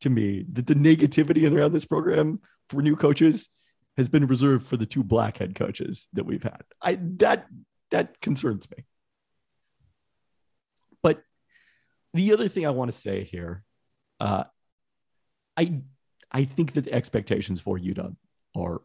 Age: 30-49